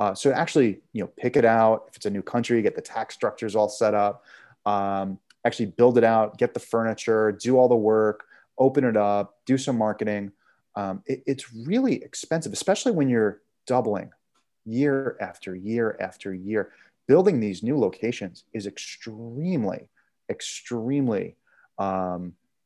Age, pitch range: 30-49, 105-130 Hz